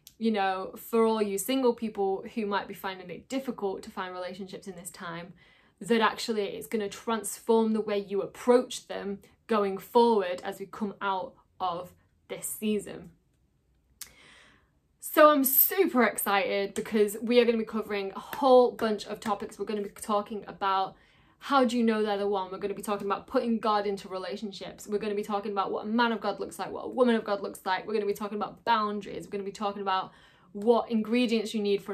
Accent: British